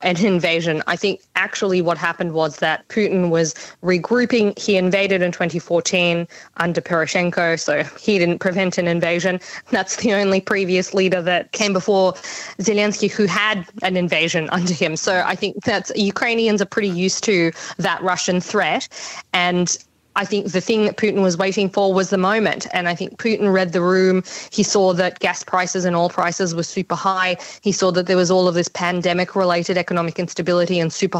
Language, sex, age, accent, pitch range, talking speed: English, female, 20-39, Australian, 175-200 Hz, 185 wpm